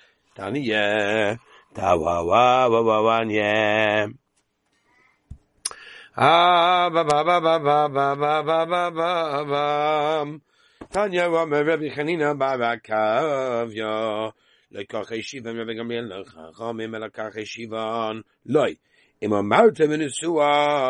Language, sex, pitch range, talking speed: English, male, 110-165 Hz, 85 wpm